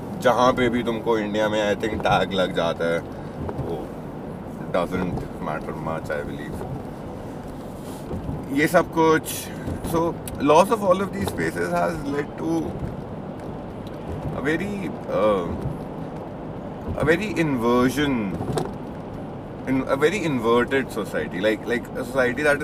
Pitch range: 115-160 Hz